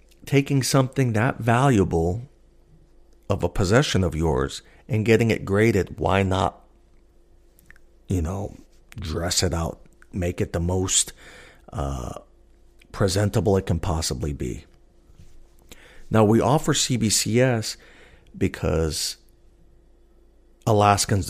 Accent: American